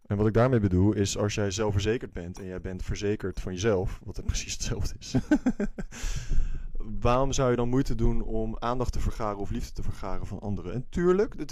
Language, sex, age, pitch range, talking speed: Dutch, male, 20-39, 100-125 Hz, 210 wpm